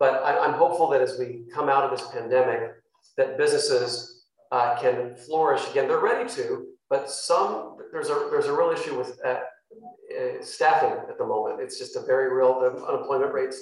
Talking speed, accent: 190 wpm, American